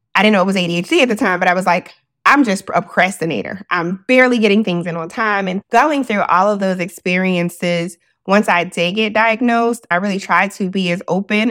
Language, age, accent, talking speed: English, 20-39, American, 225 wpm